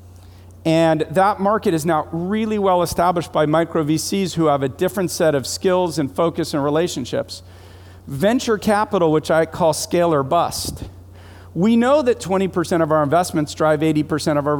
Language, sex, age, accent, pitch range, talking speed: English, male, 40-59, American, 125-175 Hz, 170 wpm